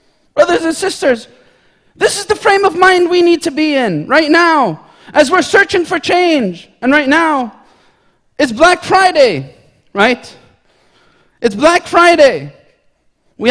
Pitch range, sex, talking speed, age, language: 225-335 Hz, male, 140 wpm, 40-59, English